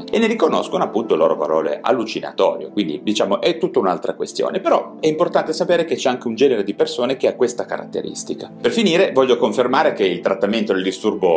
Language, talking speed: Italian, 200 wpm